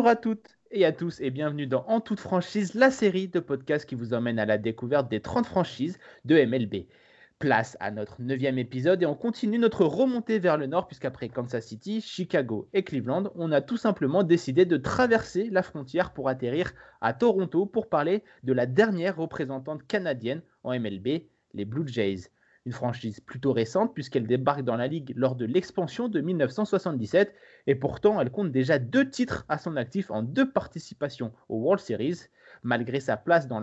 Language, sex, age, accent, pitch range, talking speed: French, male, 30-49, French, 130-190 Hz, 185 wpm